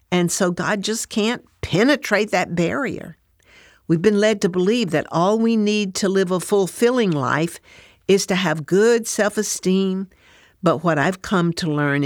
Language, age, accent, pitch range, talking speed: English, 60-79, American, 155-200 Hz, 165 wpm